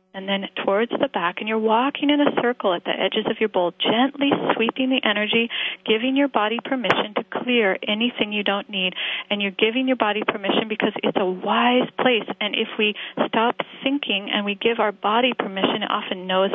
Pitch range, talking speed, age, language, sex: 195-235 Hz, 205 wpm, 30-49, English, female